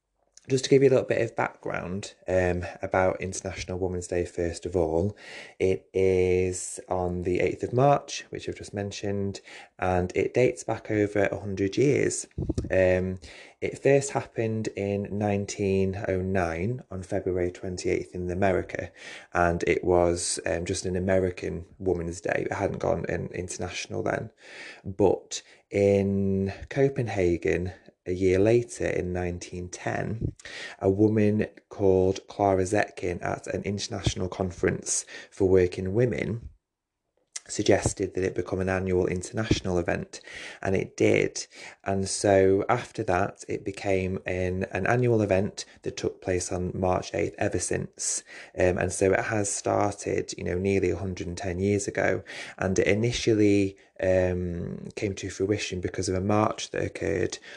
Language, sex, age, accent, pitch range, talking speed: English, male, 20-39, British, 90-100 Hz, 145 wpm